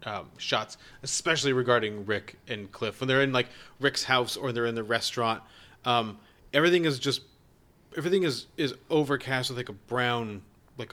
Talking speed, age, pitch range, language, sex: 170 wpm, 30-49, 125-175 Hz, English, male